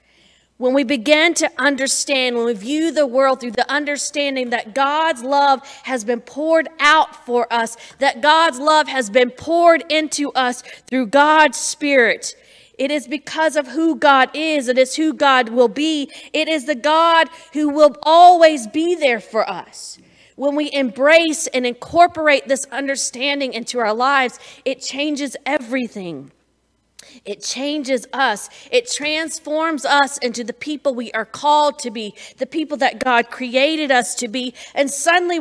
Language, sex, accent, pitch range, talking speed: English, female, American, 255-300 Hz, 160 wpm